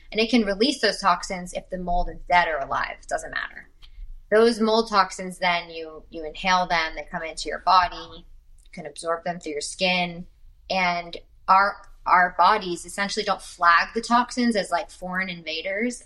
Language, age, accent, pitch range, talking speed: English, 20-39, American, 165-205 Hz, 185 wpm